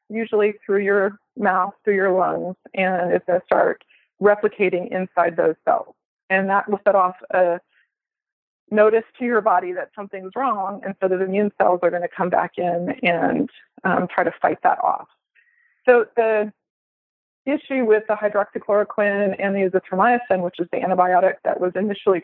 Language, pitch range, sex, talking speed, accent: English, 190-220 Hz, female, 170 wpm, American